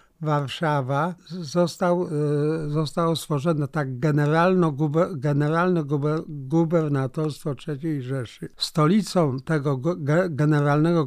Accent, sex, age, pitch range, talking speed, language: native, male, 50-69, 135-160 Hz, 60 wpm, Polish